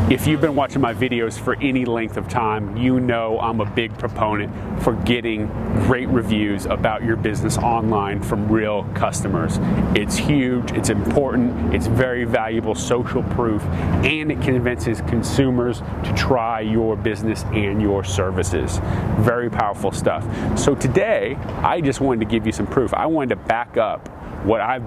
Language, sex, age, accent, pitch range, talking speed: English, male, 30-49, American, 105-125 Hz, 165 wpm